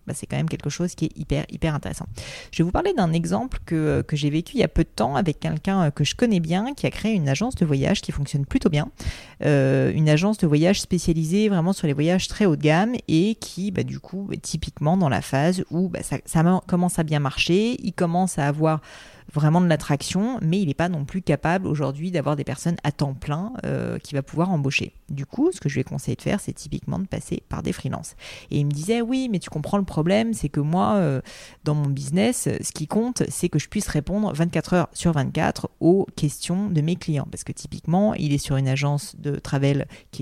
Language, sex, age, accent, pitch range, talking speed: French, female, 30-49, French, 145-185 Hz, 245 wpm